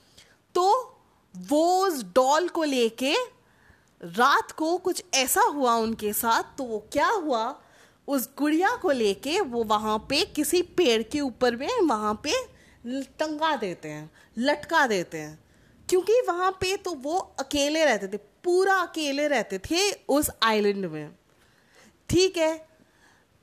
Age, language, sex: 20-39, Hindi, female